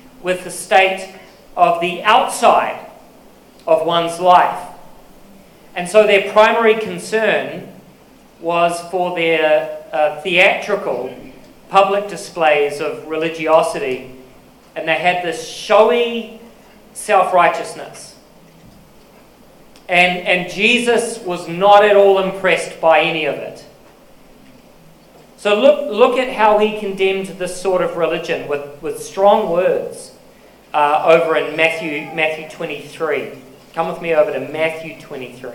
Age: 40-59